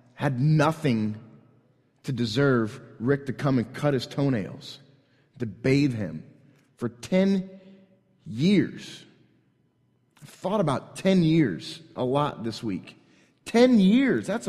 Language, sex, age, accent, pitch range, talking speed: English, male, 30-49, American, 125-175 Hz, 120 wpm